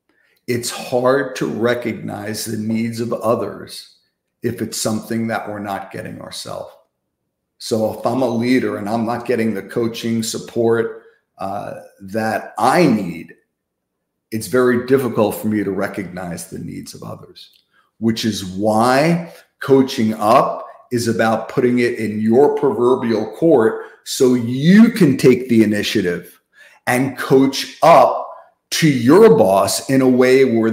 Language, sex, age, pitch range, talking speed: English, male, 50-69, 110-165 Hz, 140 wpm